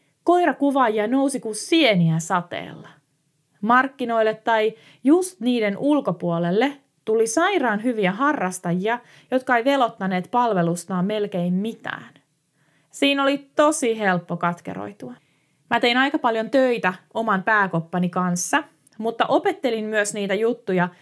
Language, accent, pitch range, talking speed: Finnish, native, 180-255 Hz, 110 wpm